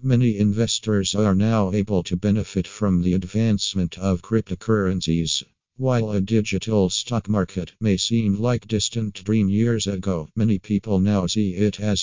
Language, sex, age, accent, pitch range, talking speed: English, male, 50-69, American, 95-110 Hz, 150 wpm